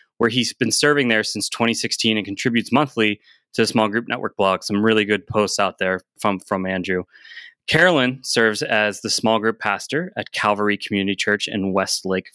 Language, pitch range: English, 100-130 Hz